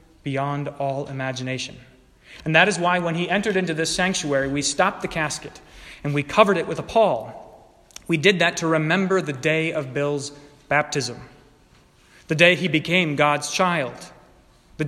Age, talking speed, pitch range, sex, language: 30-49, 165 wpm, 135-160 Hz, male, English